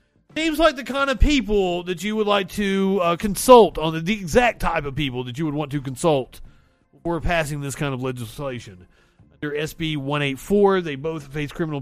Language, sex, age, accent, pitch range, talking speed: English, male, 40-59, American, 145-195 Hz, 200 wpm